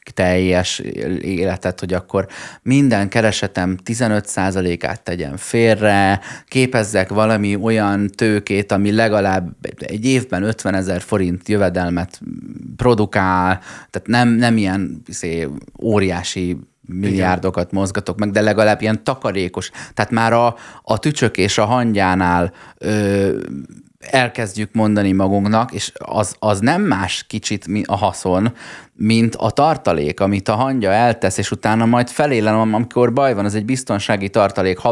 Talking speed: 125 wpm